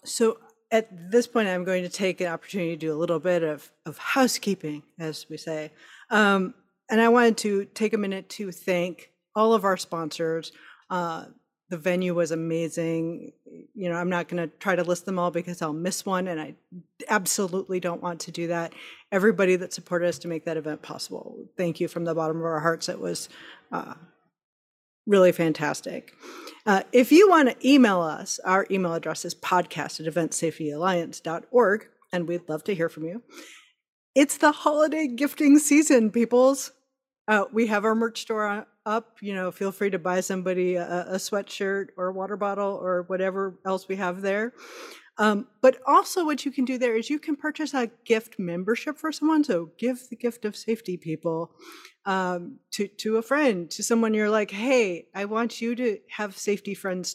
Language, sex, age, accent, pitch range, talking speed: English, female, 40-59, American, 175-230 Hz, 190 wpm